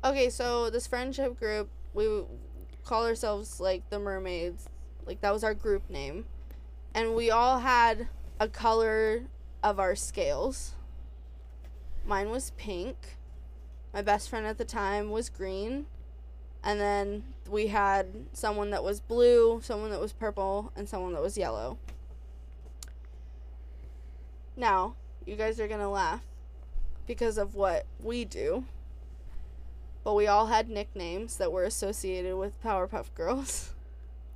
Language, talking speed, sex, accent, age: English, 135 wpm, female, American, 20-39